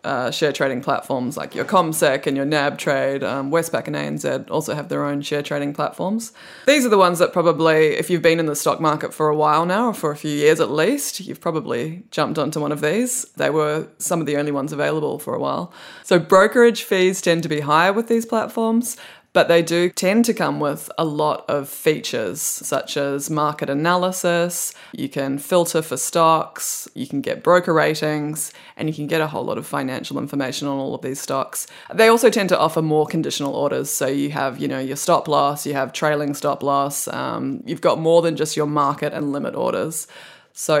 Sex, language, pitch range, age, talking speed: female, English, 145-180 Hz, 20-39, 215 wpm